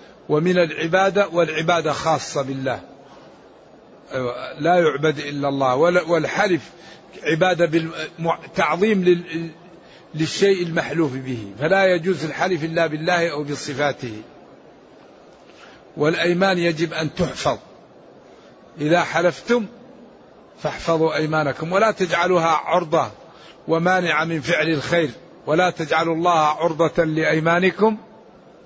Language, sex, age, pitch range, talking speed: Arabic, male, 60-79, 145-175 Hz, 90 wpm